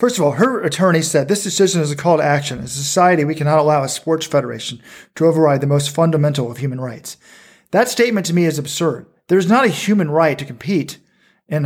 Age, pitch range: 40-59, 145-185 Hz